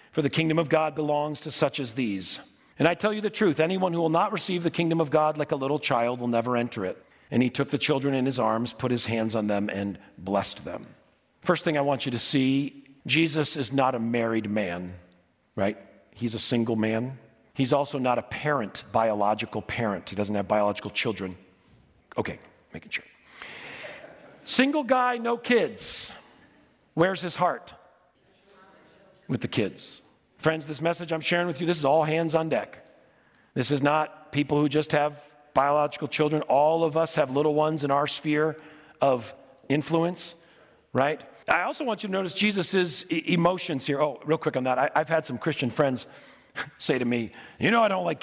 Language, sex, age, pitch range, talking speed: English, male, 40-59, 120-165 Hz, 190 wpm